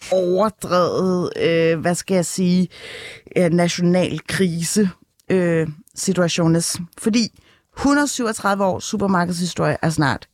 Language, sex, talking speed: Danish, female, 95 wpm